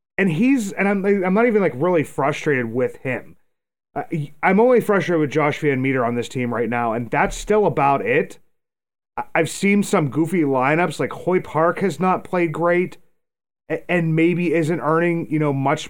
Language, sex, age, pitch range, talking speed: English, male, 30-49, 140-175 Hz, 185 wpm